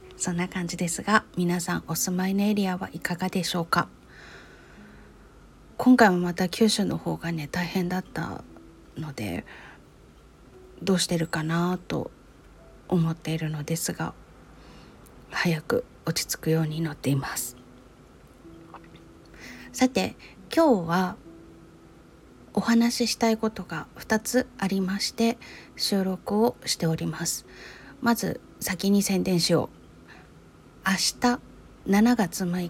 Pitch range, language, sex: 165-215 Hz, Japanese, female